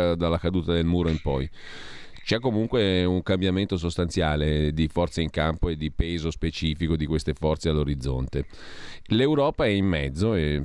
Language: Italian